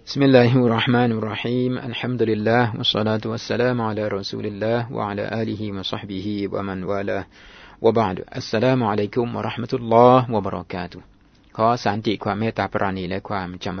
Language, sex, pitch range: Thai, male, 90-115 Hz